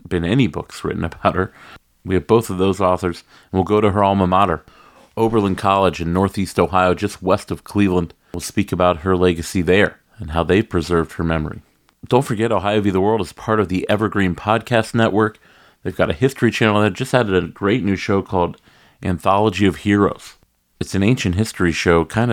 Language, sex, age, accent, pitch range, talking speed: English, male, 40-59, American, 85-100 Hz, 200 wpm